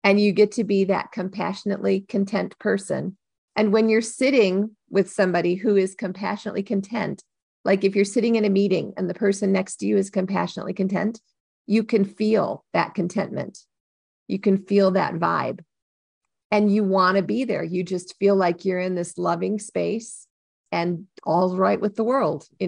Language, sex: English, female